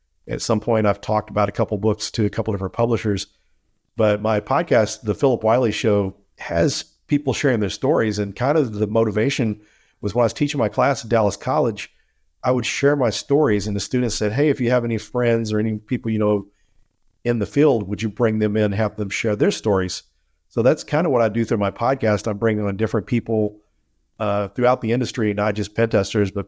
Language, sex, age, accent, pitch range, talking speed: English, male, 50-69, American, 100-115 Hz, 225 wpm